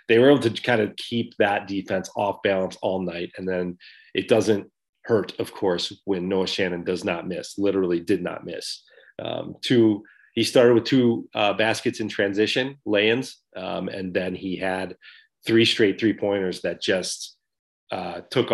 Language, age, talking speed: English, 30-49, 175 wpm